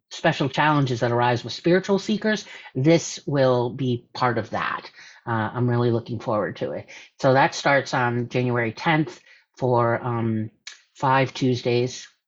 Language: English